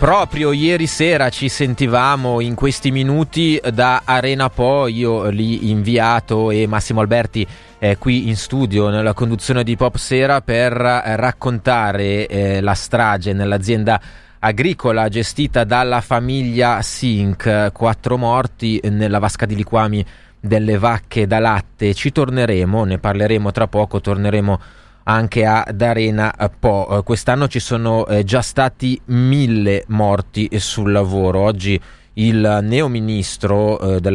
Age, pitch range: 20-39, 105-125 Hz